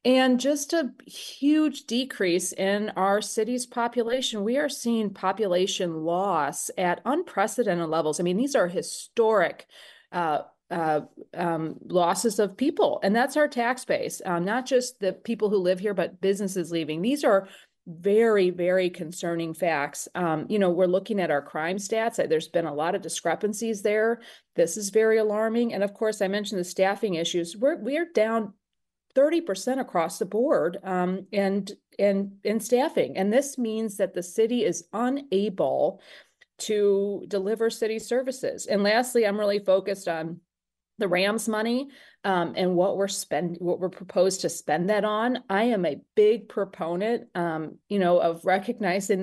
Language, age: English, 30-49